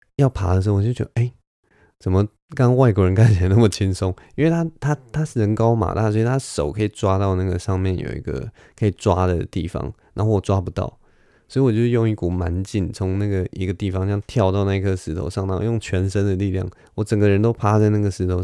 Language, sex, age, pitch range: Chinese, male, 20-39, 90-110 Hz